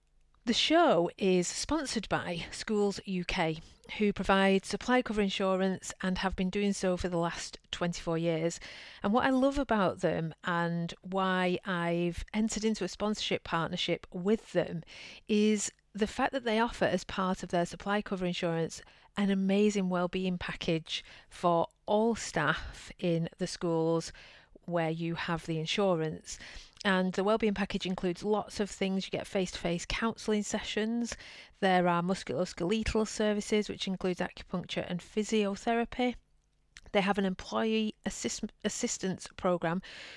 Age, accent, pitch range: 40-59, British, 170-210 Hz